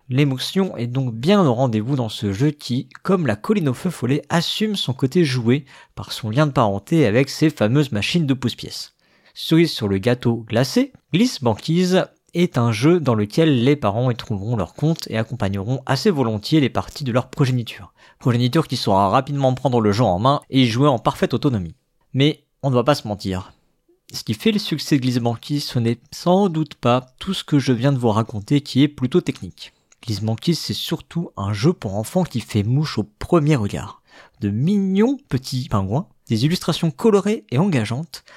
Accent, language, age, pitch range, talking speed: French, French, 50-69, 120-165 Hz, 200 wpm